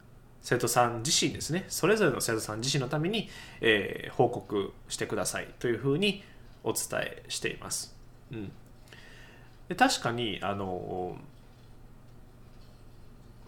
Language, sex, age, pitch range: Japanese, male, 20-39, 120-135 Hz